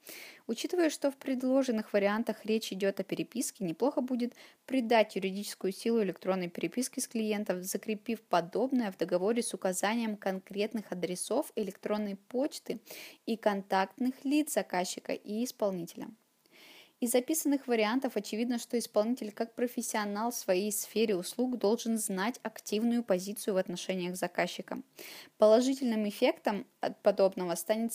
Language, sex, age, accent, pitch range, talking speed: Russian, female, 20-39, native, 195-240 Hz, 125 wpm